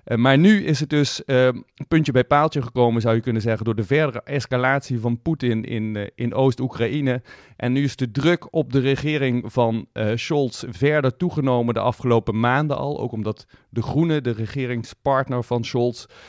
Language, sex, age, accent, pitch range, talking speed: Dutch, male, 40-59, Dutch, 120-150 Hz, 185 wpm